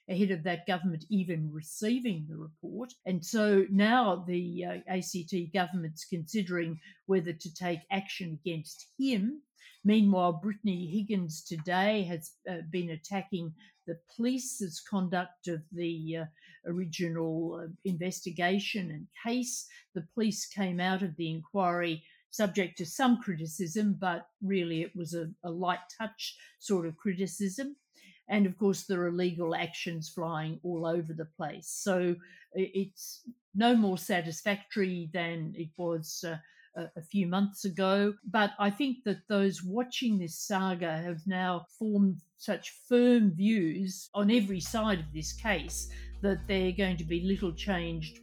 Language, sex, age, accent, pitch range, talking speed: English, female, 50-69, Australian, 170-200 Hz, 145 wpm